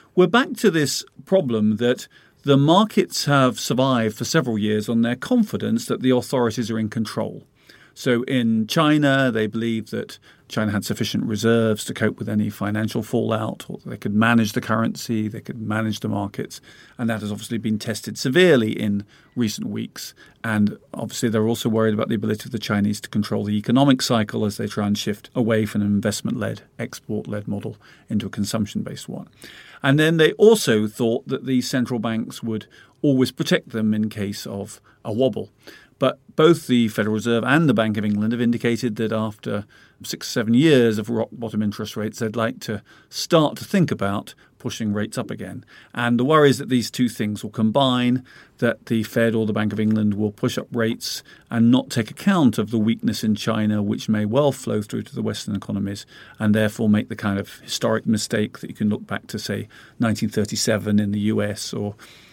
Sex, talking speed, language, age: male, 190 wpm, English, 40-59